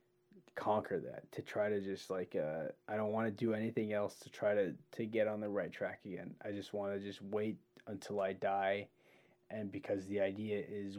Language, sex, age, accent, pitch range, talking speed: English, male, 20-39, American, 100-125 Hz, 215 wpm